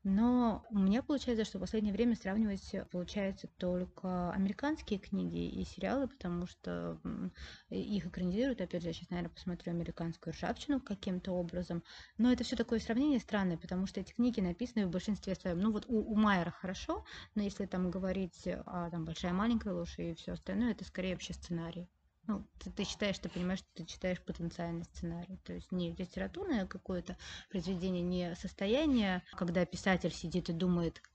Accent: native